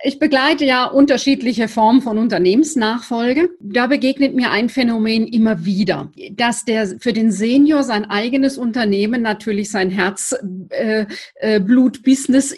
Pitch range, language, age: 210-265 Hz, German, 40-59